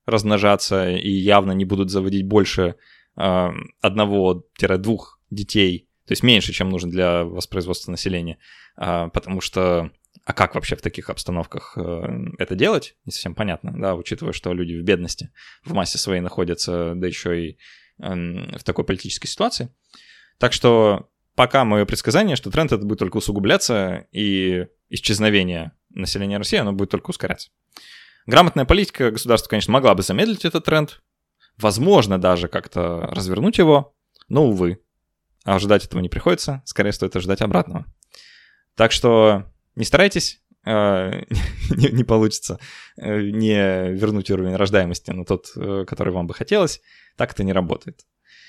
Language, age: Russian, 20-39